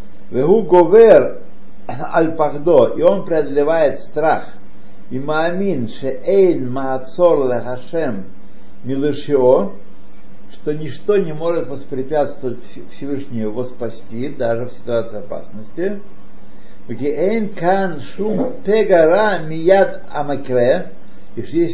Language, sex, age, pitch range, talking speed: Russian, male, 60-79, 120-185 Hz, 55 wpm